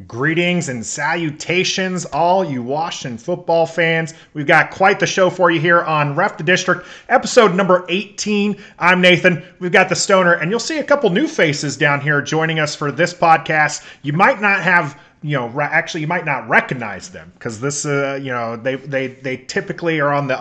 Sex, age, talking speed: male, 30-49, 195 wpm